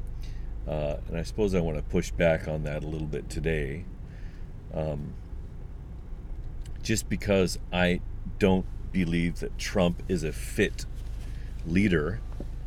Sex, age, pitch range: male, 40-59, 80-105 Hz